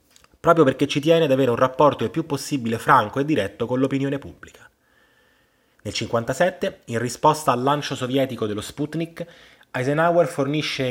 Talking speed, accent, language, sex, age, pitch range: 155 wpm, native, Italian, male, 20-39, 115-145 Hz